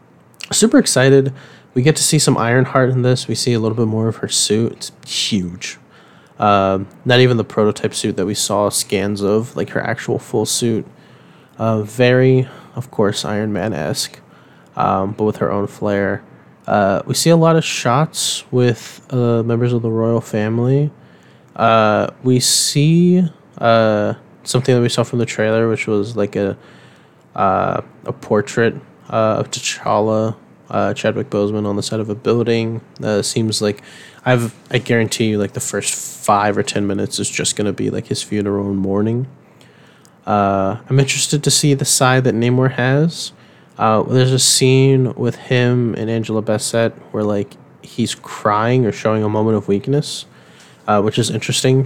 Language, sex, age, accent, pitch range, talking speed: English, male, 20-39, American, 105-130 Hz, 170 wpm